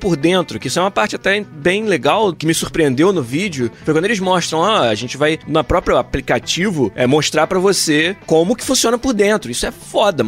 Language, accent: Portuguese, Brazilian